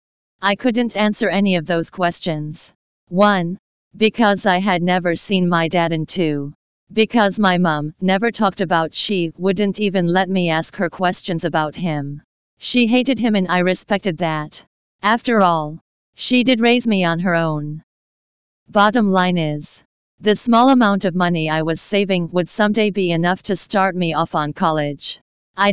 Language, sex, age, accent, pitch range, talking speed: English, female, 40-59, American, 165-210 Hz, 165 wpm